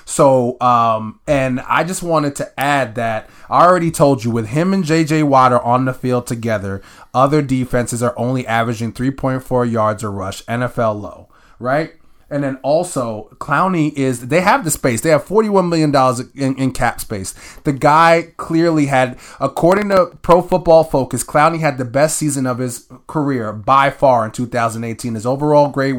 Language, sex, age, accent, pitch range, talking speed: English, male, 20-39, American, 120-145 Hz, 175 wpm